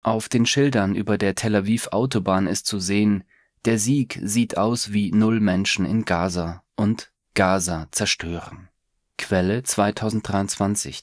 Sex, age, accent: male, 30-49, German